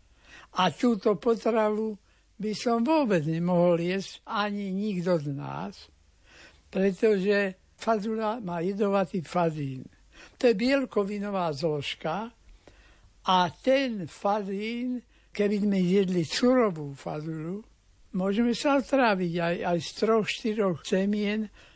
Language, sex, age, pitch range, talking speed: Slovak, male, 60-79, 165-210 Hz, 100 wpm